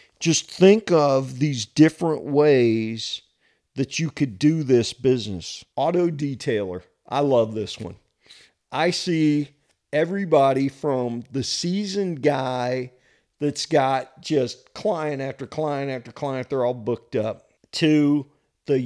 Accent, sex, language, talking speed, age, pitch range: American, male, English, 125 wpm, 50-69, 125-155 Hz